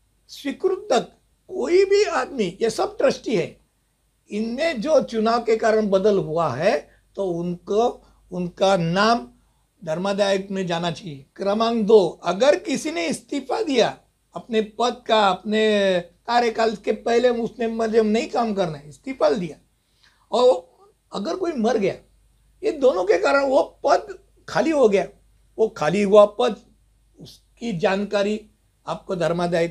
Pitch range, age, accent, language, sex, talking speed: 180-245 Hz, 60-79, native, Hindi, male, 135 wpm